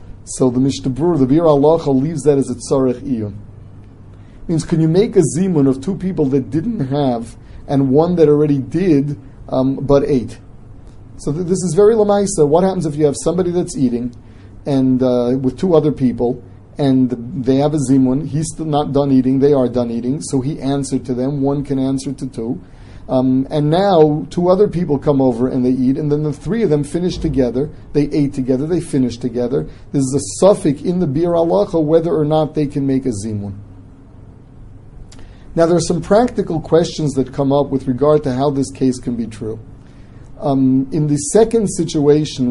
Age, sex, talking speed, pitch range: 40-59, male, 195 wpm, 125-155 Hz